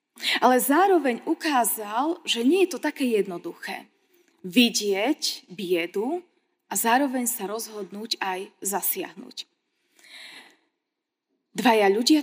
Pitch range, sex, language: 215-310 Hz, female, Slovak